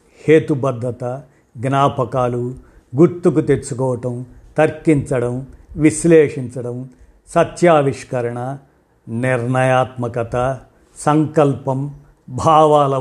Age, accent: 50-69, native